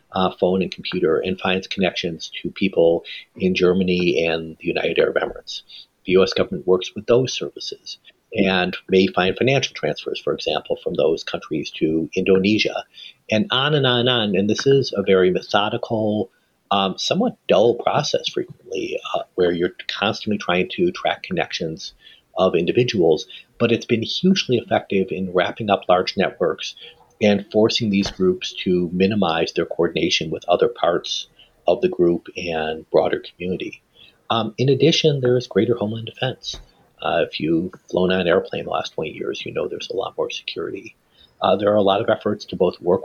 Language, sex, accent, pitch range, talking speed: English, male, American, 95-130 Hz, 175 wpm